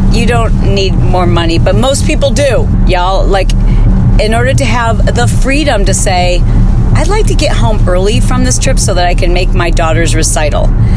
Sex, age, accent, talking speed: female, 40-59, American, 195 wpm